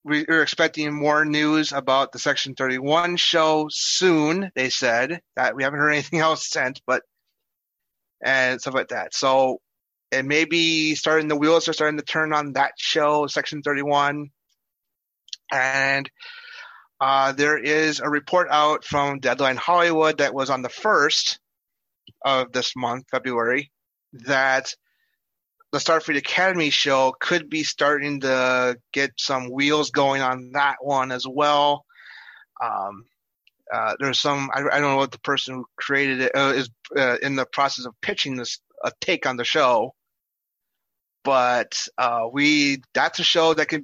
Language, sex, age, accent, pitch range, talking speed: English, male, 30-49, American, 130-155 Hz, 155 wpm